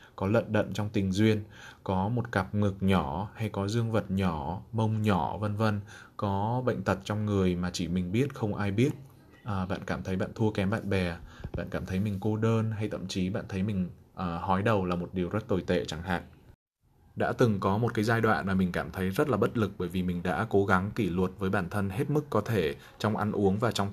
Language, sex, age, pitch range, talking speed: Vietnamese, male, 20-39, 95-110 Hz, 250 wpm